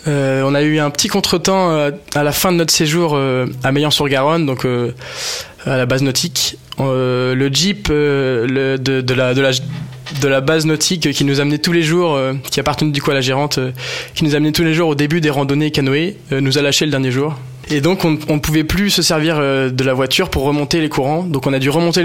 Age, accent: 20-39, French